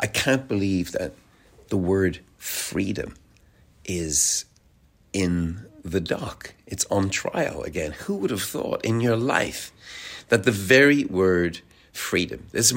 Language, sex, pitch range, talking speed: German, male, 95-120 Hz, 135 wpm